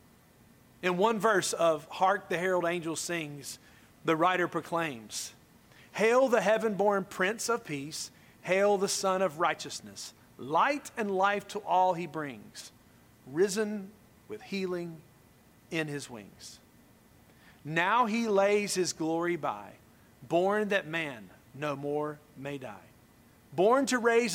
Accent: American